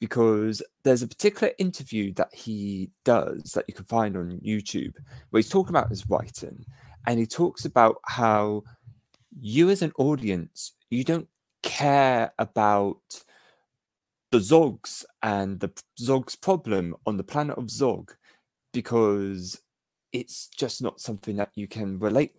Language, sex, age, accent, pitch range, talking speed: English, male, 20-39, British, 100-140 Hz, 140 wpm